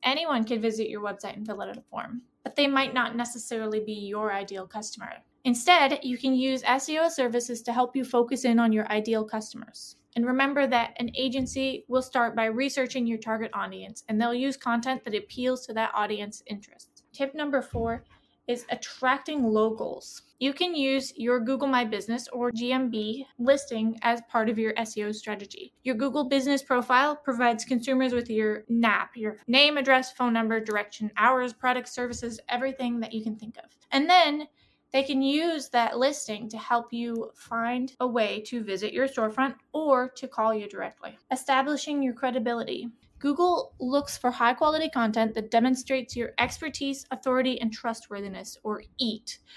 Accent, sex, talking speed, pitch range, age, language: American, female, 170 wpm, 225-270 Hz, 20-39, English